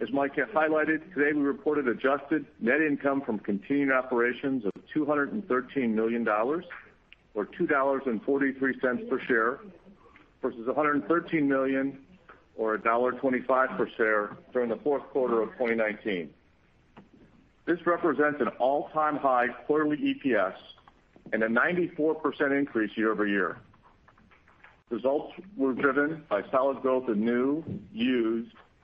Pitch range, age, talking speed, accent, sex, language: 110-145 Hz, 50-69, 110 wpm, American, male, English